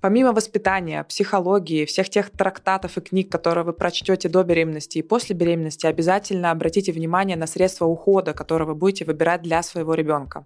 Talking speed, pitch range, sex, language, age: 165 wpm, 170-200 Hz, female, Russian, 20-39